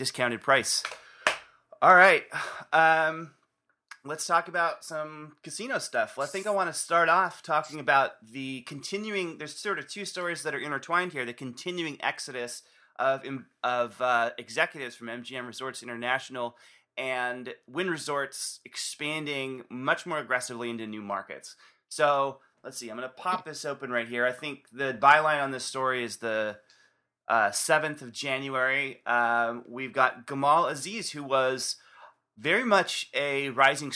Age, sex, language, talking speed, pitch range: 30-49, male, English, 150 wpm, 120-150 Hz